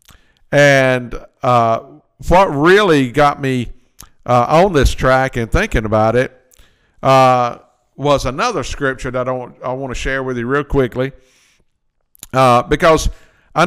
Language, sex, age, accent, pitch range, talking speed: English, male, 50-69, American, 120-150 Hz, 140 wpm